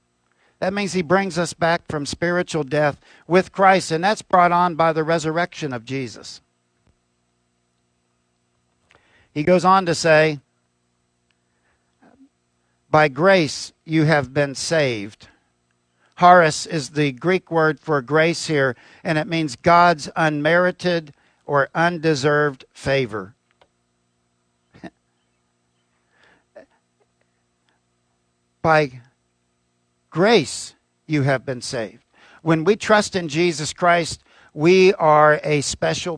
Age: 50-69